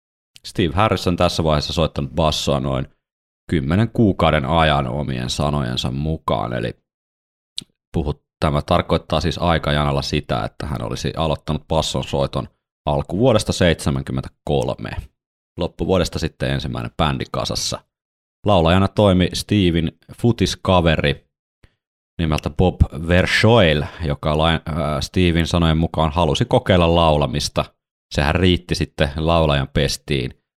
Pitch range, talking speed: 75-90 Hz, 100 wpm